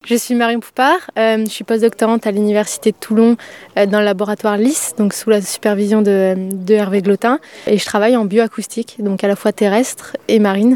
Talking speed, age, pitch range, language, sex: 210 wpm, 20-39, 200-230 Hz, French, female